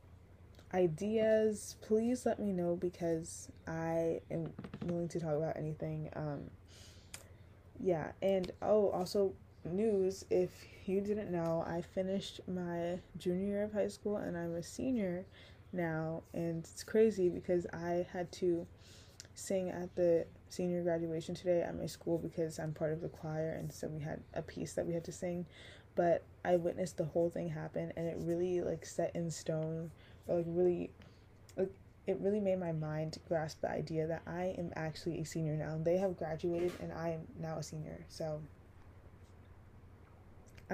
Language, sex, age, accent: English, female, 20-39, American